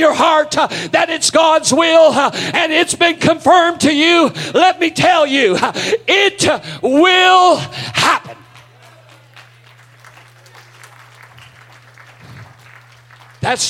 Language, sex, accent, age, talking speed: English, male, American, 50-69, 100 wpm